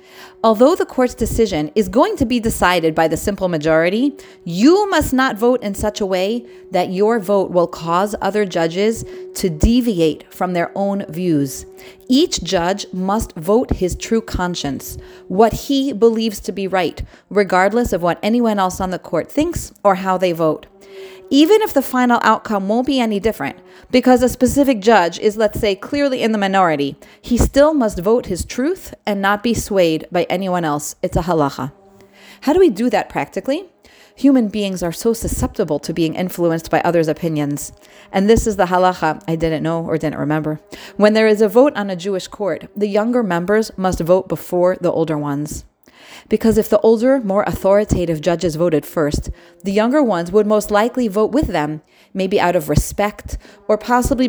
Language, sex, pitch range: English, female, 180-245 Hz